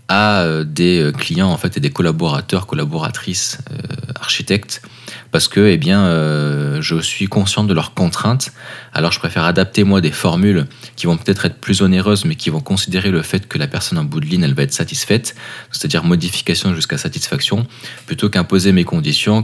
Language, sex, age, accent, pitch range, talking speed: French, male, 20-39, French, 85-125 Hz, 195 wpm